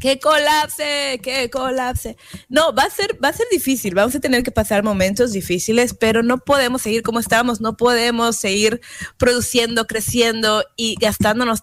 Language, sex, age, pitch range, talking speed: Spanish, female, 20-39, 200-245 Hz, 165 wpm